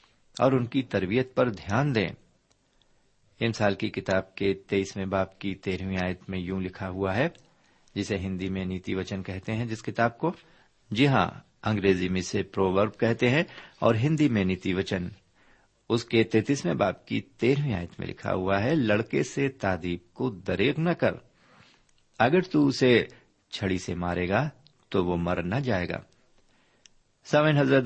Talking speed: 170 wpm